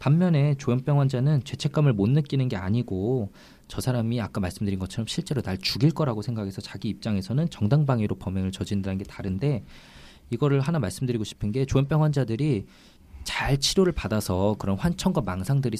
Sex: male